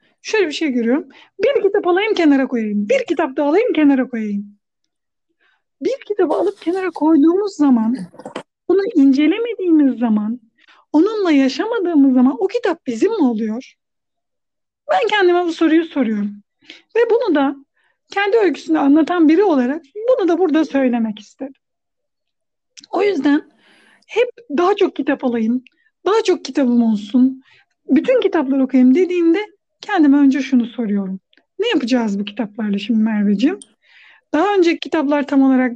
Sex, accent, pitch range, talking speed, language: female, native, 250-365 Hz, 135 wpm, Turkish